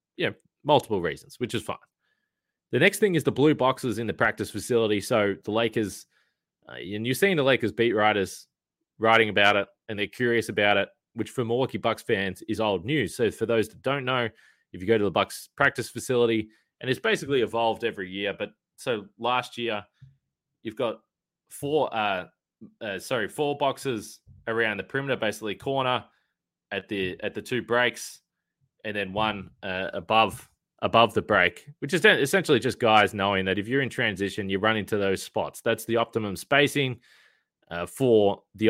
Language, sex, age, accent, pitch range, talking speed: English, male, 20-39, Australian, 105-125 Hz, 185 wpm